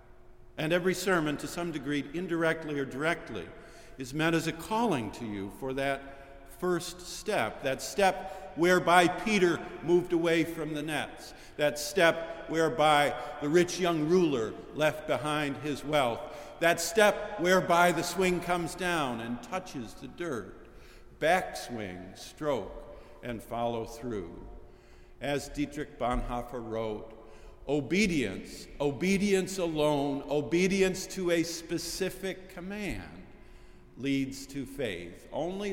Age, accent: 50-69, American